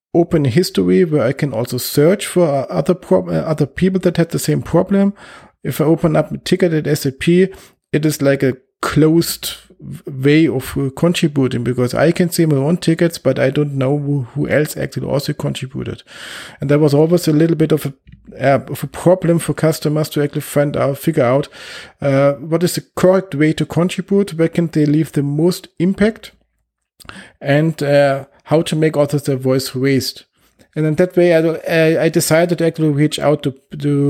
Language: German